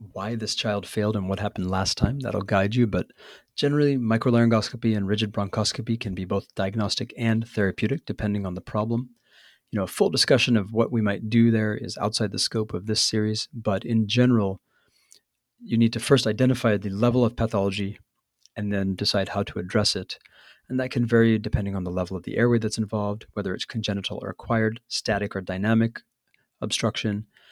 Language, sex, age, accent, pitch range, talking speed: English, male, 40-59, American, 100-120 Hz, 190 wpm